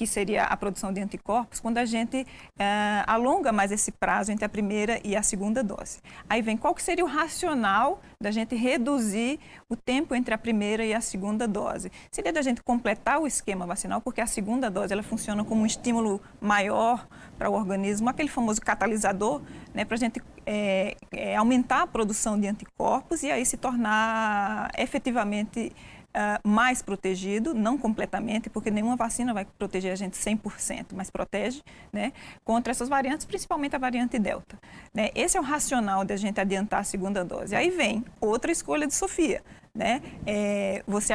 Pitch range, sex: 205-245 Hz, female